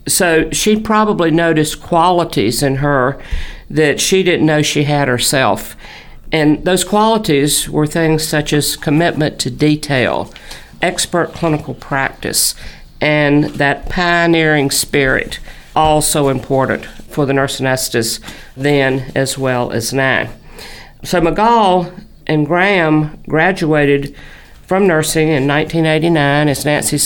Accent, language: American, English